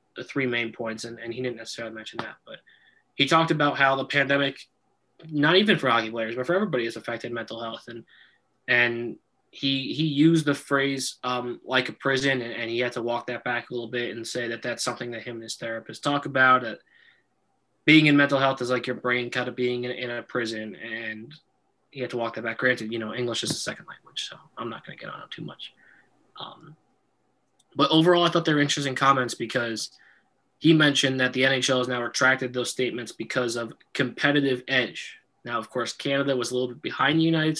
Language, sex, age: English, male, 20-39